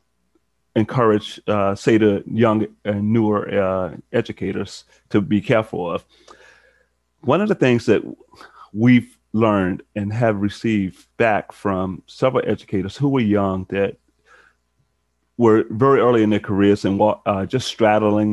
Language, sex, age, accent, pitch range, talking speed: English, male, 30-49, American, 95-110 Hz, 135 wpm